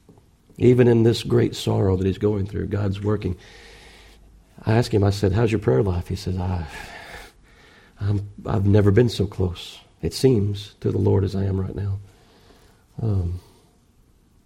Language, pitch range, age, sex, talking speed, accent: English, 100-120 Hz, 50-69, male, 165 wpm, American